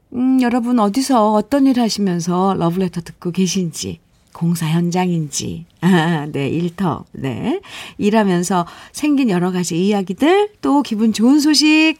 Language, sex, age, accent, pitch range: Korean, female, 50-69, native, 175-260 Hz